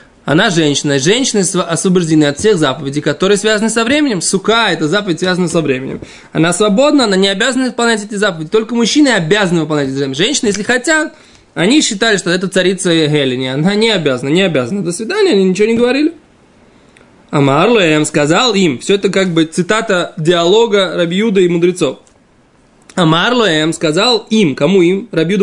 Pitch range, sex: 160-225 Hz, male